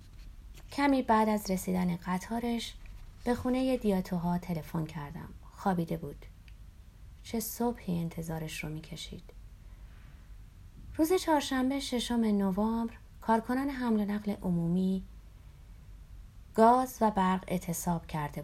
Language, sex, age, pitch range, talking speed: Persian, female, 30-49, 165-225 Hz, 105 wpm